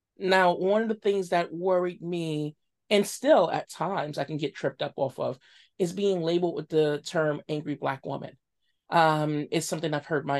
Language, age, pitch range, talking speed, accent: English, 30-49, 165-200 Hz, 195 wpm, American